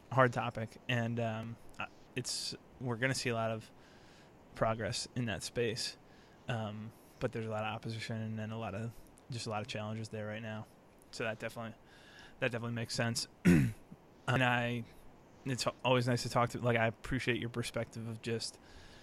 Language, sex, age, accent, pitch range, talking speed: English, male, 20-39, American, 110-125 Hz, 175 wpm